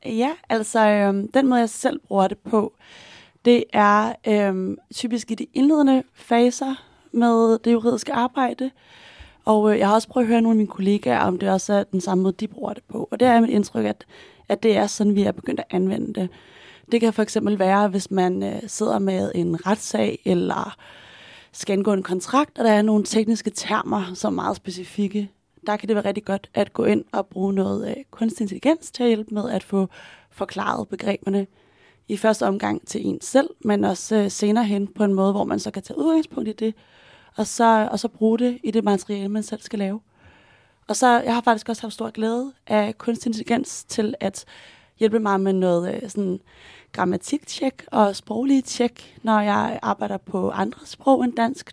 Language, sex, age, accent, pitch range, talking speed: Danish, female, 30-49, native, 200-235 Hz, 205 wpm